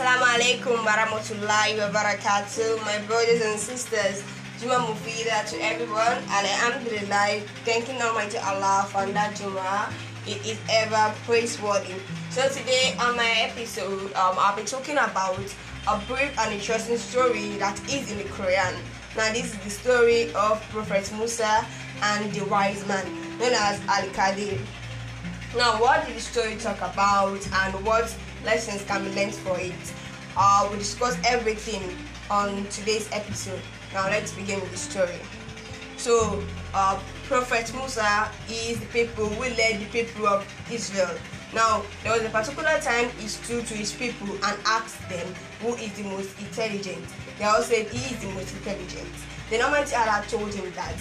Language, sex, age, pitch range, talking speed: English, female, 10-29, 195-230 Hz, 160 wpm